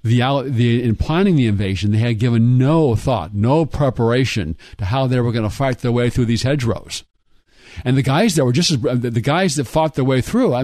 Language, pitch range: English, 115-145 Hz